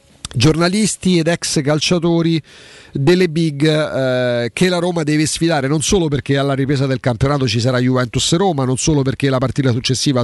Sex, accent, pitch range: male, native, 130-175 Hz